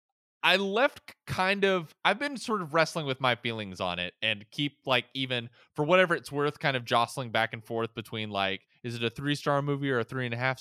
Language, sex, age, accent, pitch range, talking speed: English, male, 20-39, American, 110-145 Hz, 220 wpm